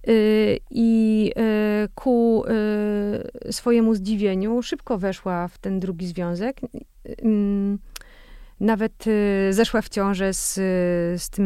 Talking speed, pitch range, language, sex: 90 wpm, 195-235 Hz, Polish, female